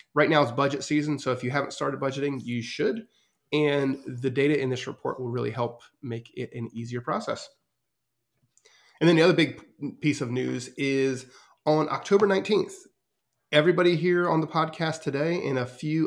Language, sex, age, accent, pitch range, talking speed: English, male, 30-49, American, 130-155 Hz, 180 wpm